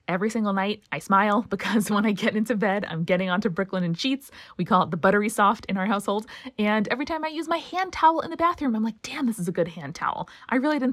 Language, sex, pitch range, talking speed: English, female, 185-245 Hz, 265 wpm